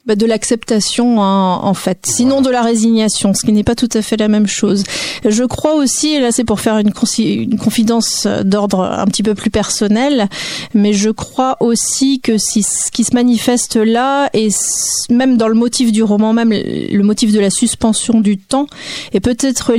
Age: 40-59